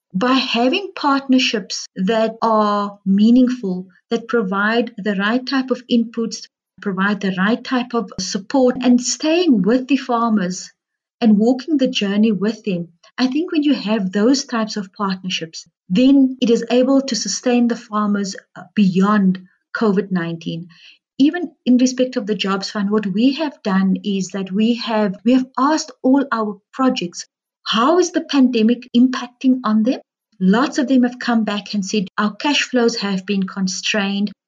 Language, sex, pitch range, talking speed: English, female, 205-255 Hz, 155 wpm